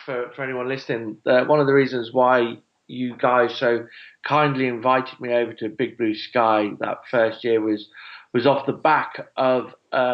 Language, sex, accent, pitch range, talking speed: English, male, British, 125-160 Hz, 185 wpm